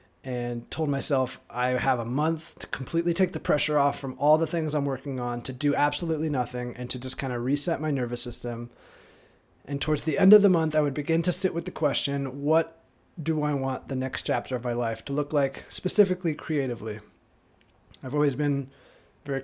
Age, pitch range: 20-39, 125-155 Hz